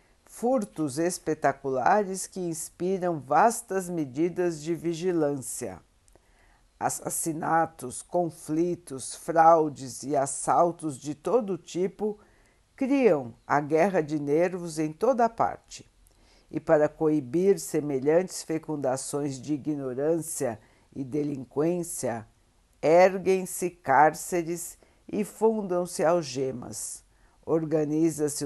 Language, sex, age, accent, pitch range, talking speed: Portuguese, female, 60-79, Brazilian, 135-180 Hz, 80 wpm